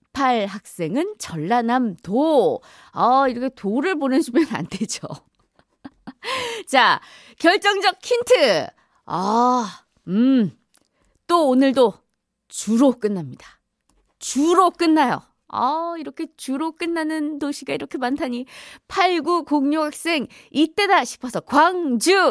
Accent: native